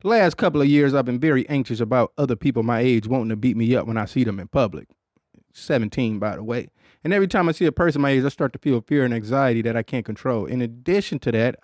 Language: English